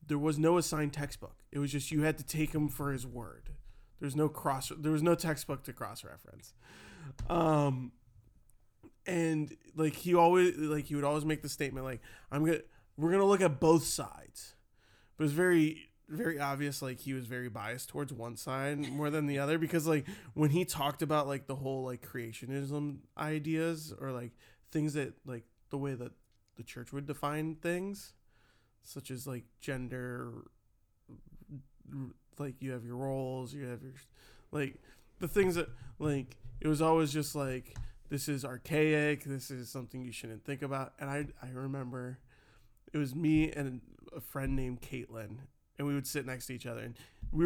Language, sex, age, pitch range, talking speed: English, male, 20-39, 120-155 Hz, 185 wpm